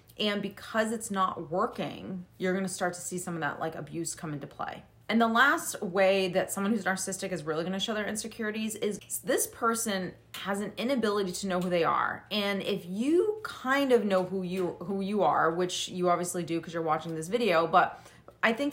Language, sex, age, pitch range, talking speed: English, female, 30-49, 180-215 Hz, 210 wpm